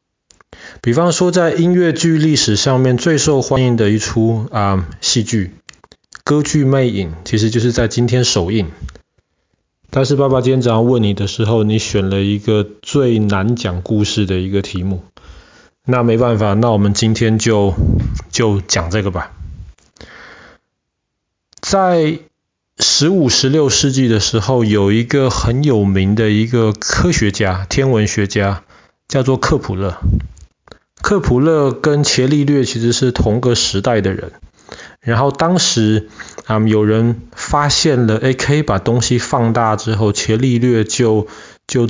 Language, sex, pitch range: Chinese, male, 105-130 Hz